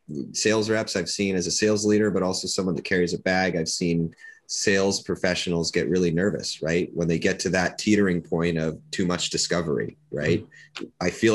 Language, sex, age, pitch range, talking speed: English, male, 30-49, 85-105 Hz, 195 wpm